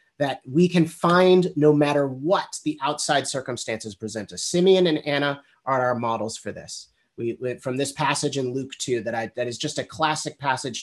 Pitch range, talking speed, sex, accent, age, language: 130-175 Hz, 200 wpm, male, American, 30-49, English